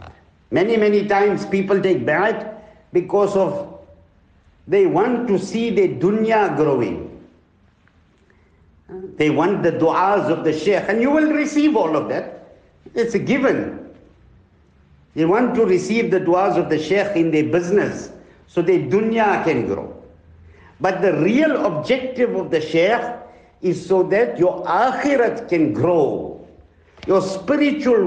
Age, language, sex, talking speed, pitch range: 60-79, English, male, 140 wpm, 150-230 Hz